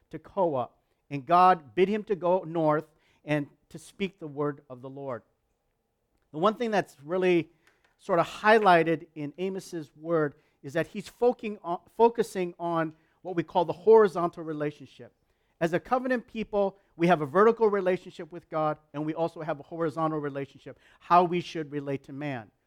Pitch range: 160-215 Hz